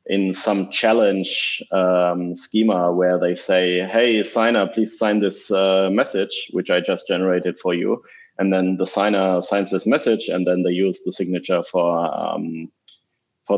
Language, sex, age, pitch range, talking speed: English, male, 30-49, 90-110 Hz, 165 wpm